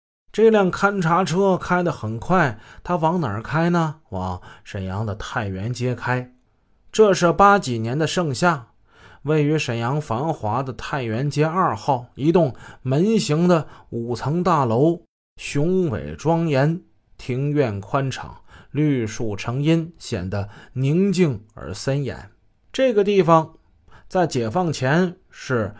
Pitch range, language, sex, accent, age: 115-170 Hz, Chinese, male, native, 20-39